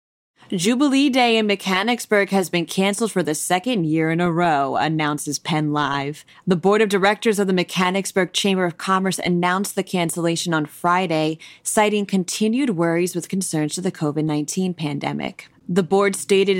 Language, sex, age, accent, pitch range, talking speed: English, female, 20-39, American, 165-215 Hz, 155 wpm